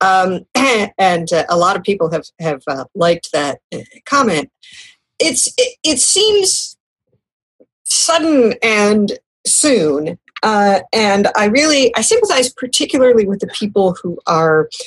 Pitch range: 180-255 Hz